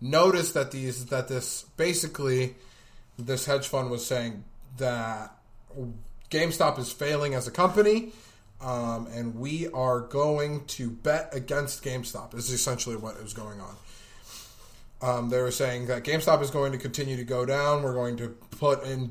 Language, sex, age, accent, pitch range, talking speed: English, male, 20-39, American, 120-135 Hz, 165 wpm